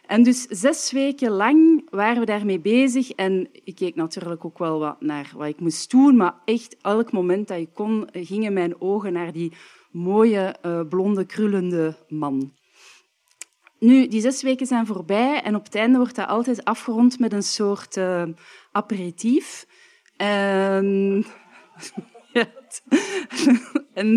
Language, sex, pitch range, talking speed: Dutch, female, 190-255 Hz, 140 wpm